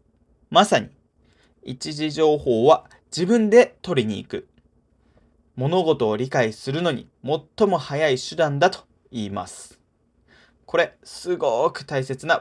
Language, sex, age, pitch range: Japanese, male, 20-39, 120-165 Hz